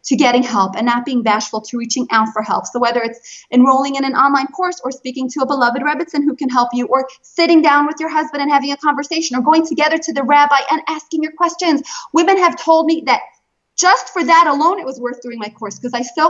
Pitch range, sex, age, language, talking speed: 240-325 Hz, female, 30-49, English, 250 wpm